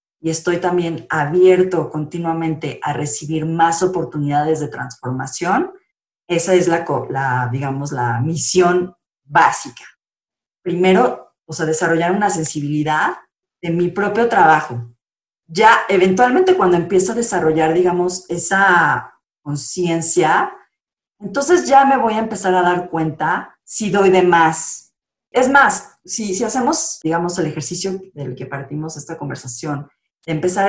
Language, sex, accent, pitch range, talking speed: Spanish, female, Mexican, 155-200 Hz, 125 wpm